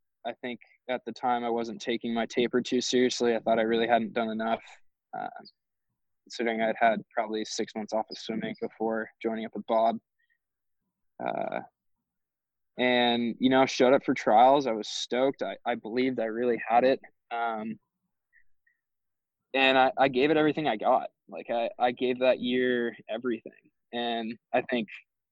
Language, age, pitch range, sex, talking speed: English, 20-39, 110-125 Hz, male, 170 wpm